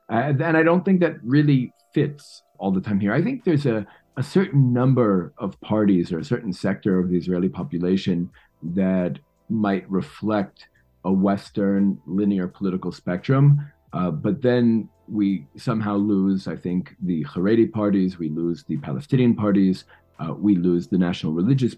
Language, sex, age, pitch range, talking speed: English, male, 40-59, 90-110 Hz, 160 wpm